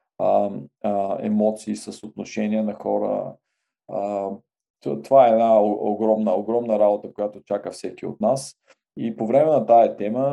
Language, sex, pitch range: Bulgarian, male, 110-130 Hz